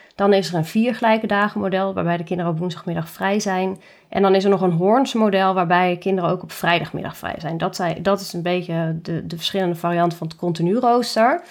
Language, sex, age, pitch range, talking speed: Dutch, female, 20-39, 180-220 Hz, 235 wpm